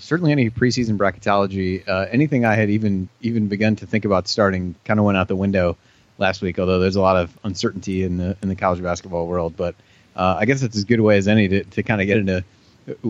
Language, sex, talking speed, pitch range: English, male, 245 wpm, 95-110 Hz